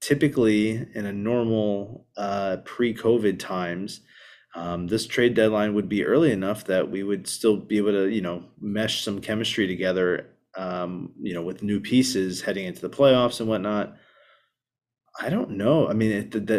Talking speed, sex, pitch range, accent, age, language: 170 wpm, male, 95-115 Hz, American, 20-39, English